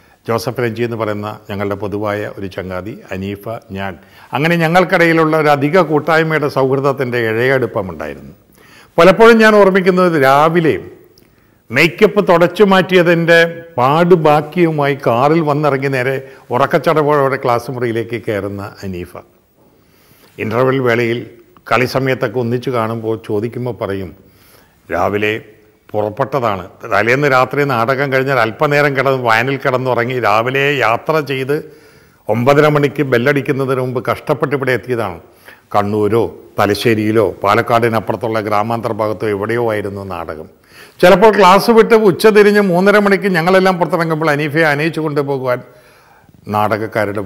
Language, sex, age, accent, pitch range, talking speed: Malayalam, male, 50-69, native, 110-150 Hz, 105 wpm